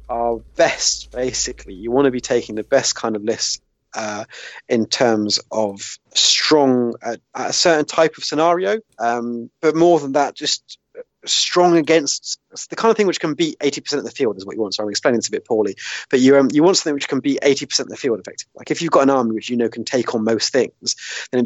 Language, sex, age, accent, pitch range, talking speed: English, male, 20-39, British, 110-135 Hz, 235 wpm